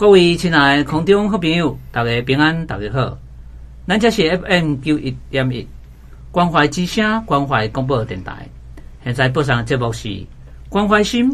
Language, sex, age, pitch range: Chinese, male, 50-69, 115-155 Hz